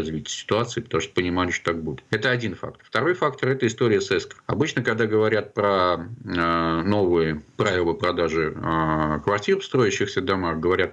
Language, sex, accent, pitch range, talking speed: Russian, male, native, 85-120 Hz, 160 wpm